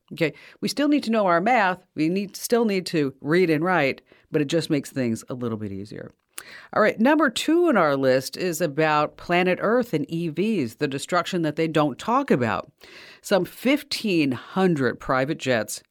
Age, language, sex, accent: 50-69, English, female, American